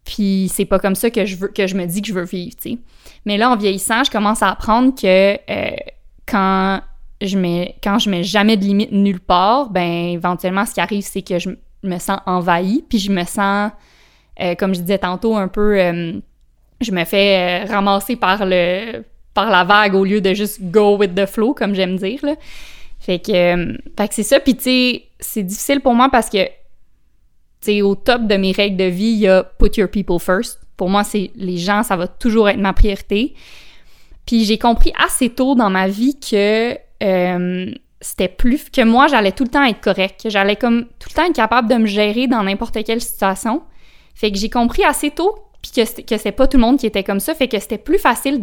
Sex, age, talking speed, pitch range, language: female, 20-39, 230 wpm, 195-240 Hz, French